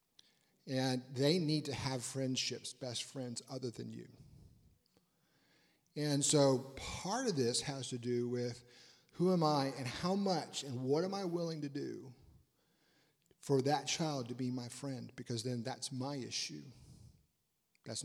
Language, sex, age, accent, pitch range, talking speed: English, male, 40-59, American, 130-160 Hz, 155 wpm